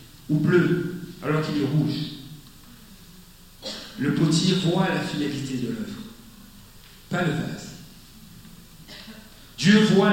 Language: French